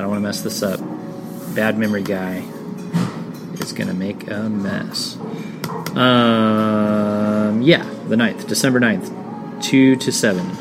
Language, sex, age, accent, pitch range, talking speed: English, male, 30-49, American, 105-140 Hz, 140 wpm